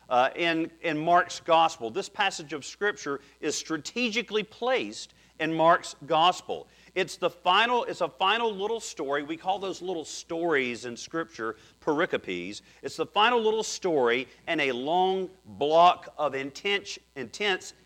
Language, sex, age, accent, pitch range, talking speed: English, male, 40-59, American, 145-200 Hz, 140 wpm